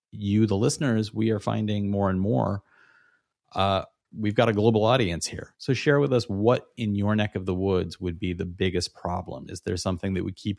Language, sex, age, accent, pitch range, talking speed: English, male, 40-59, American, 100-120 Hz, 215 wpm